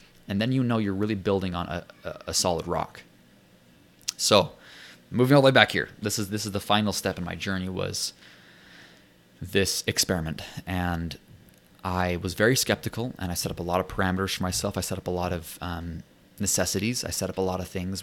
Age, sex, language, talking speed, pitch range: 20-39, male, English, 210 wpm, 90-115 Hz